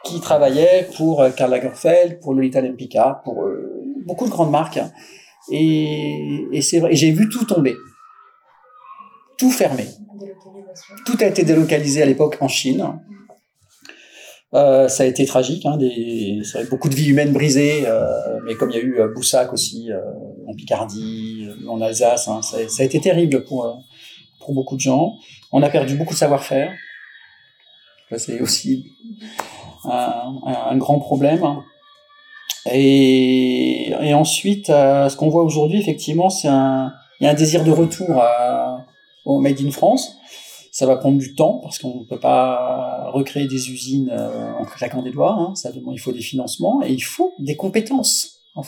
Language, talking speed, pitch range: French, 165 wpm, 130-190 Hz